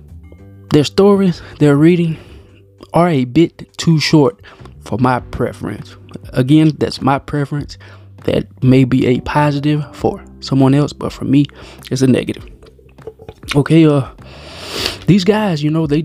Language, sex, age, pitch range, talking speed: English, male, 20-39, 120-150 Hz, 140 wpm